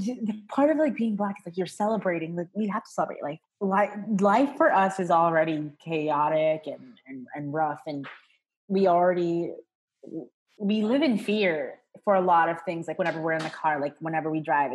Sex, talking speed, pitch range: female, 195 wpm, 170-225 Hz